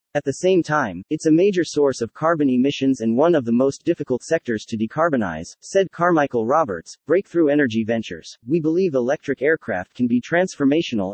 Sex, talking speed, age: male, 180 wpm, 30-49